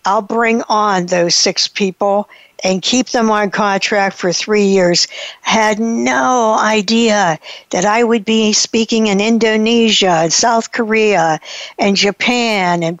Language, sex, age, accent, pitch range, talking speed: English, female, 60-79, American, 205-245 Hz, 140 wpm